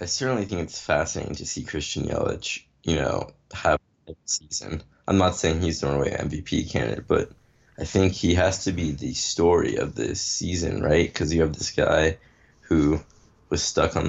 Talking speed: 190 wpm